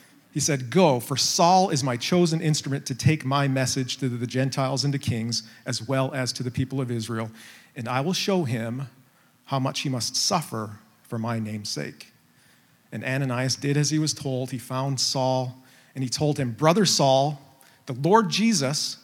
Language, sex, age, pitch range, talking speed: English, male, 40-59, 120-145 Hz, 190 wpm